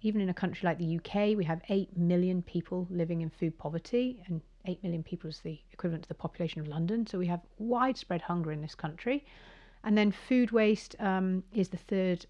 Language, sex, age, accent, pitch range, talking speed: English, female, 40-59, British, 165-205 Hz, 215 wpm